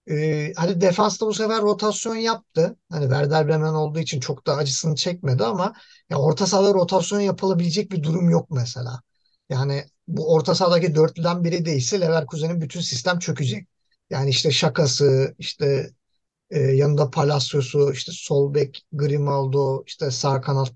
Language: Turkish